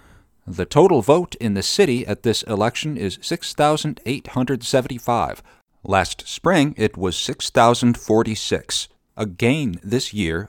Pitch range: 95-130 Hz